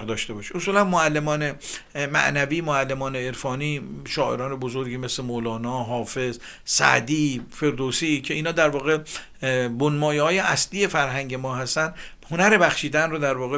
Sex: male